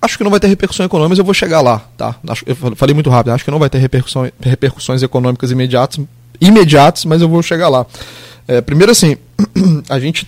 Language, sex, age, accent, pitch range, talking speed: Portuguese, male, 20-39, Brazilian, 125-165 Hz, 210 wpm